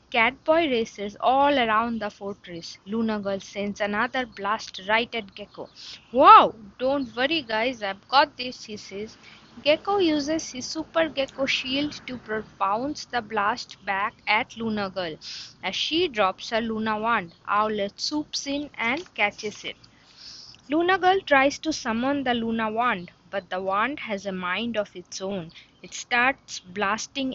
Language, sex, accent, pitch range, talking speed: English, female, Indian, 205-290 Hz, 150 wpm